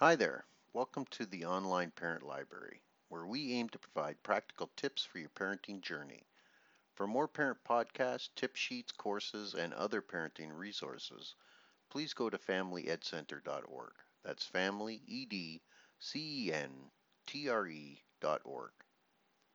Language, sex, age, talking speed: English, male, 50-69, 110 wpm